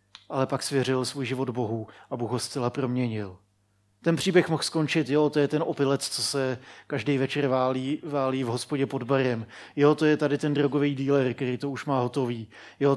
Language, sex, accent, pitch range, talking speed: Czech, male, native, 115-145 Hz, 200 wpm